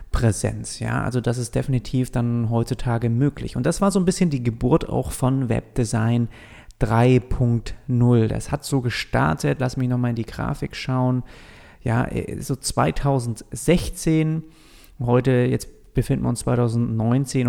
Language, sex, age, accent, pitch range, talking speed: German, male, 30-49, German, 120-140 Hz, 145 wpm